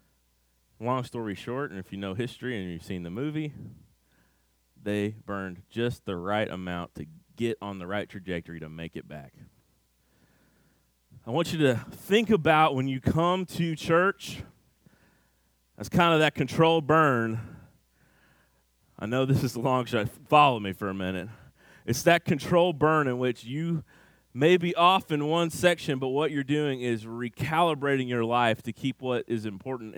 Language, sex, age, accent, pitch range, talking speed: English, male, 30-49, American, 115-175 Hz, 170 wpm